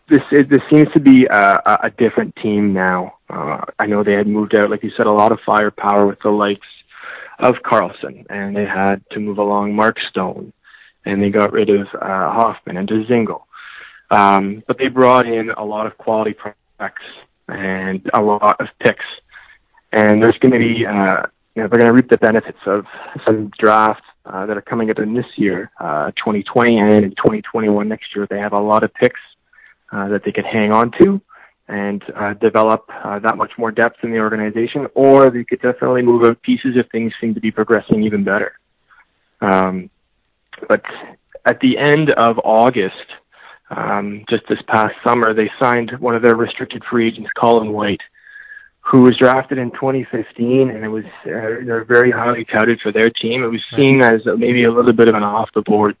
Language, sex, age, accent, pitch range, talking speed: German, male, 20-39, American, 105-120 Hz, 195 wpm